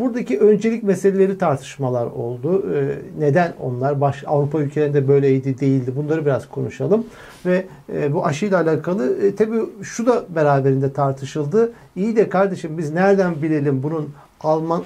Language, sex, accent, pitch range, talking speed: Turkish, male, native, 145-195 Hz, 125 wpm